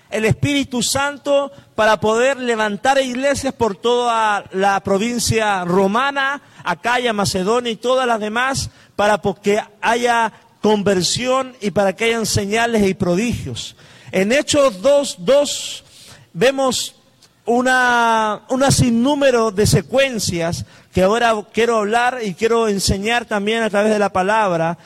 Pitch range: 195-265 Hz